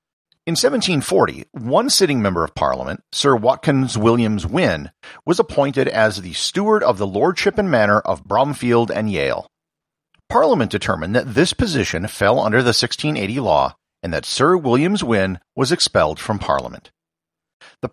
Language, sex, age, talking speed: English, male, 50-69, 150 wpm